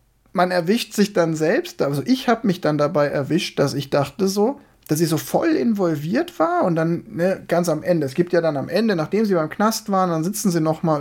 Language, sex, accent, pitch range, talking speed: German, male, German, 150-200 Hz, 235 wpm